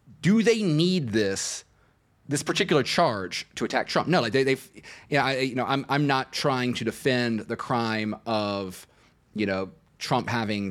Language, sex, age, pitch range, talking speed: English, male, 30-49, 115-150 Hz, 180 wpm